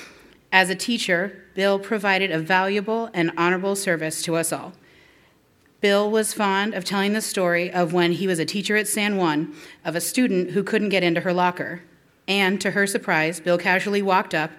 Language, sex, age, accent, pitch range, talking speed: English, female, 40-59, American, 170-215 Hz, 190 wpm